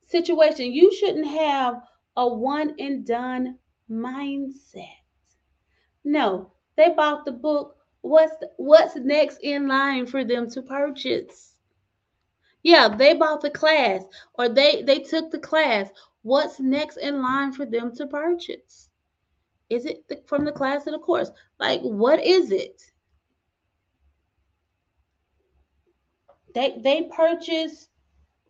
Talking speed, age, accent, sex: 115 wpm, 30-49, American, female